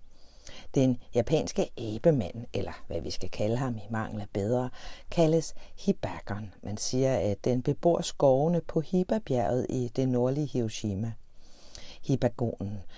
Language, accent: Danish, native